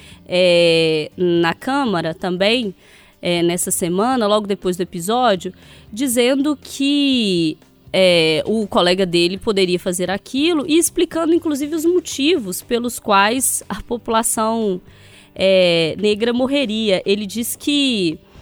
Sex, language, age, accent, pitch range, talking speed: female, Portuguese, 20-39, Brazilian, 185-260 Hz, 100 wpm